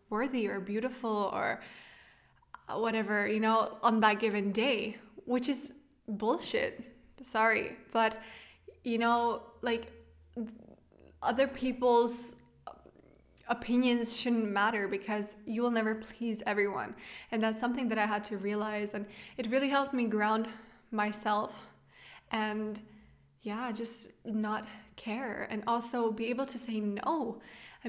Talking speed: 125 wpm